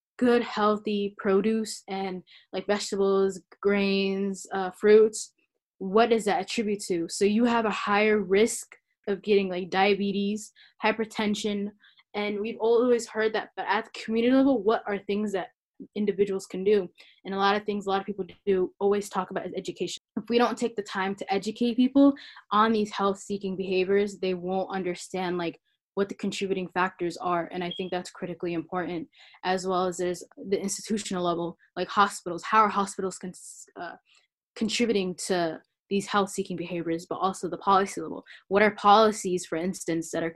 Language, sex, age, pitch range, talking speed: English, female, 10-29, 185-215 Hz, 170 wpm